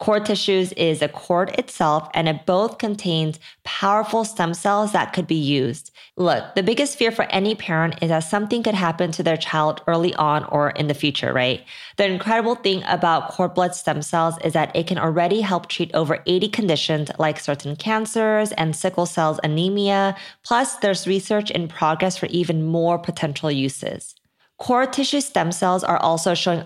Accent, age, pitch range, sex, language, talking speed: American, 20-39, 155-195 Hz, female, English, 180 wpm